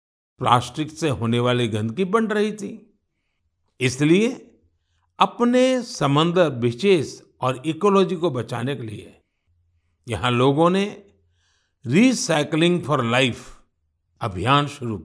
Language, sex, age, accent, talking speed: Hindi, male, 60-79, native, 105 wpm